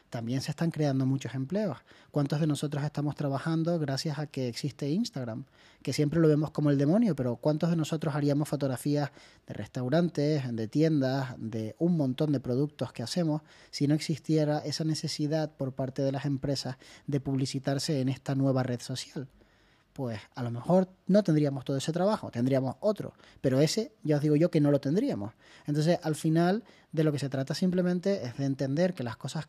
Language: Spanish